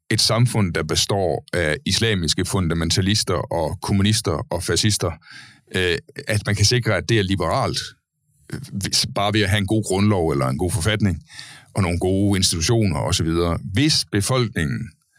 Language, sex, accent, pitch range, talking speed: Danish, male, native, 90-115 Hz, 145 wpm